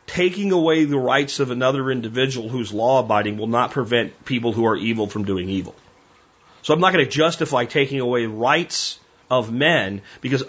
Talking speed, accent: 175 wpm, American